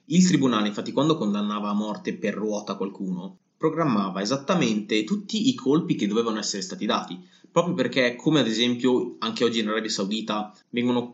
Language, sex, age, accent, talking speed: Italian, male, 20-39, native, 165 wpm